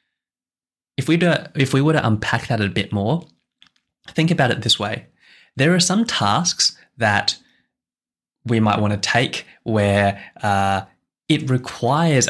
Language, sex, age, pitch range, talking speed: English, male, 10-29, 105-130 Hz, 140 wpm